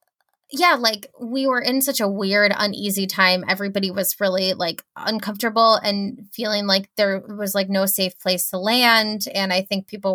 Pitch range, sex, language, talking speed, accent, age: 190-230 Hz, female, English, 175 wpm, American, 20-39